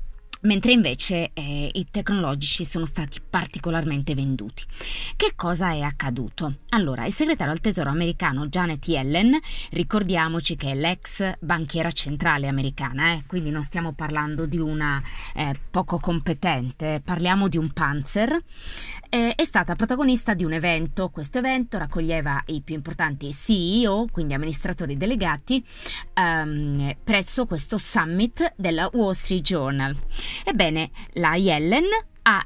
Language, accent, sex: Italian, native, female